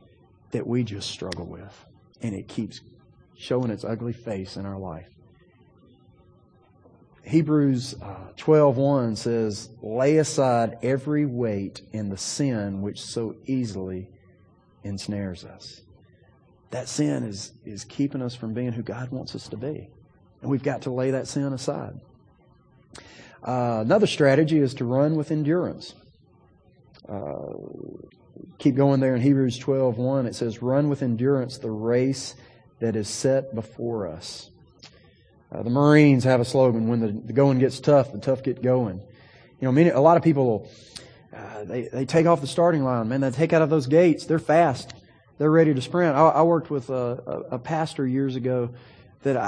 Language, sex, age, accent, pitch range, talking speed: English, male, 40-59, American, 110-145 Hz, 160 wpm